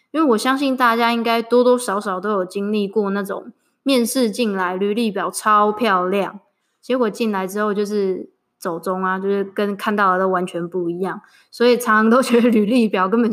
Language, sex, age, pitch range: Chinese, female, 20-39, 195-240 Hz